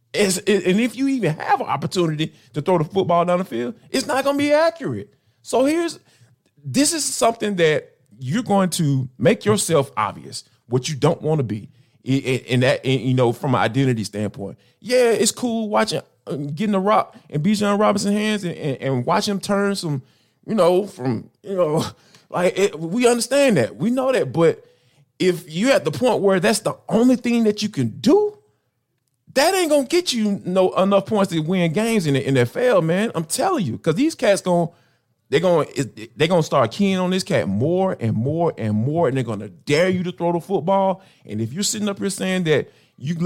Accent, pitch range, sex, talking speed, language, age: American, 135-205 Hz, male, 205 wpm, English, 20-39